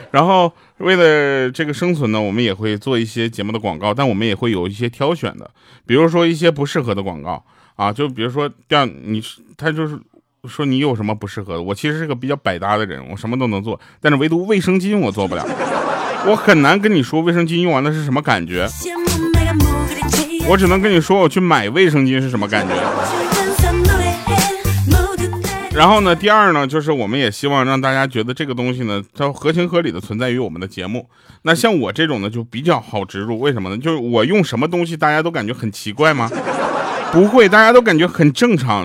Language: Chinese